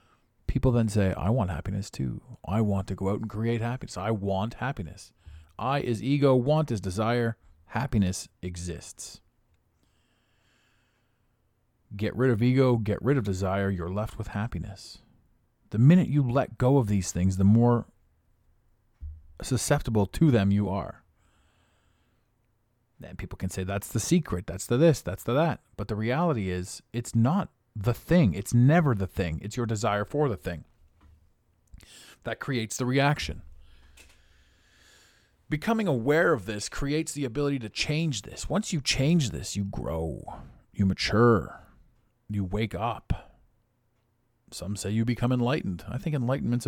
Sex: male